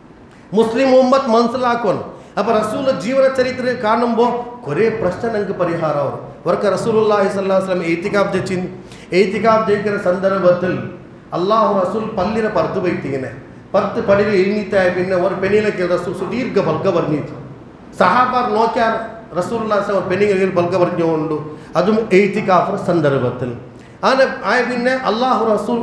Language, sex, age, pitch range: Urdu, male, 40-59, 180-230 Hz